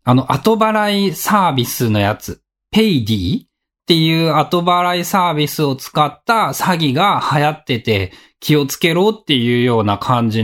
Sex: male